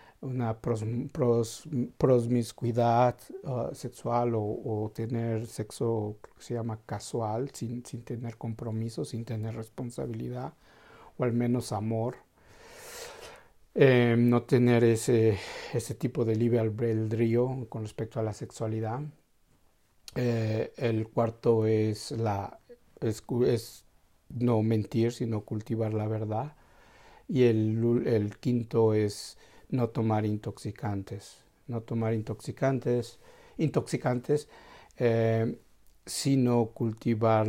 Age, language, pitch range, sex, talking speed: 60-79, Spanish, 110-120 Hz, male, 105 wpm